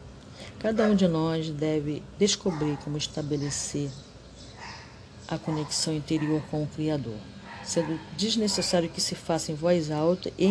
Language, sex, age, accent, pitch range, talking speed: Portuguese, female, 50-69, Brazilian, 145-175 Hz, 130 wpm